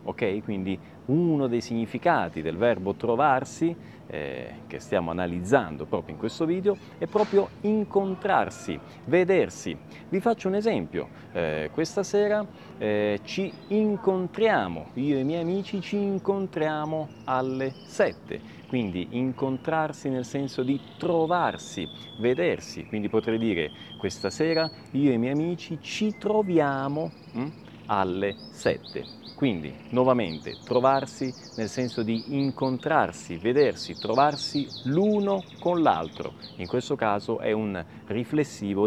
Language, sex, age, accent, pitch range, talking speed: Italian, male, 30-49, native, 110-175 Hz, 120 wpm